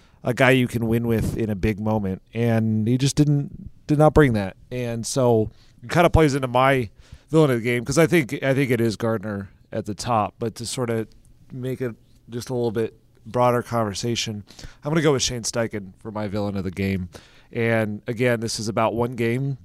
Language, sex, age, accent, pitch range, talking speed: English, male, 30-49, American, 110-125 Hz, 225 wpm